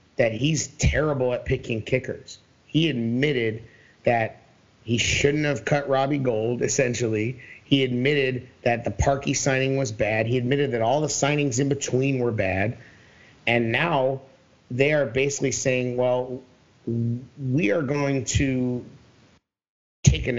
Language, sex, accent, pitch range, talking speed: English, male, American, 120-140 Hz, 140 wpm